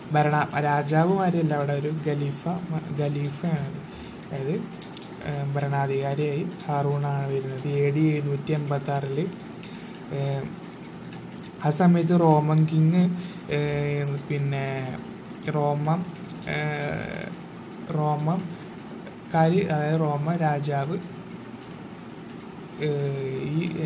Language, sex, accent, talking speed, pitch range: Malayalam, male, native, 60 wpm, 140-175 Hz